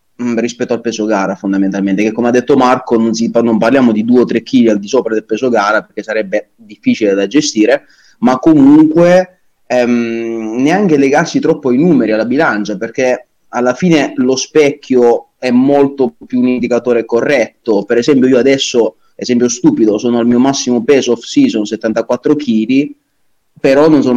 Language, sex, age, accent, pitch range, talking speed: Italian, male, 30-49, native, 120-155 Hz, 165 wpm